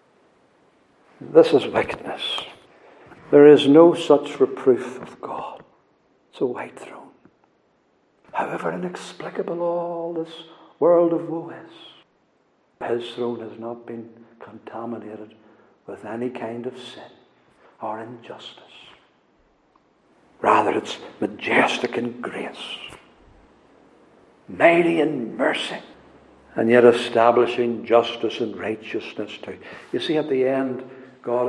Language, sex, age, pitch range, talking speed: English, male, 60-79, 115-130 Hz, 110 wpm